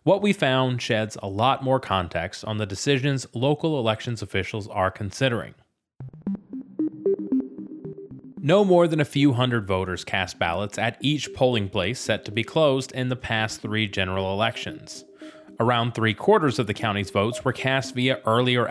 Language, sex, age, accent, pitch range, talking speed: English, male, 30-49, American, 100-140 Hz, 160 wpm